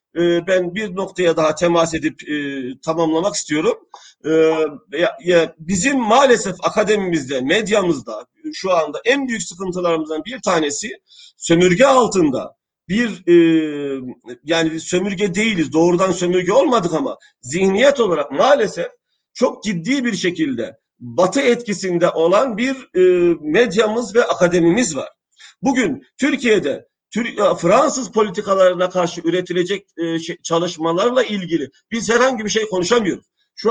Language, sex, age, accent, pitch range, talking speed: Turkish, male, 50-69, native, 170-240 Hz, 105 wpm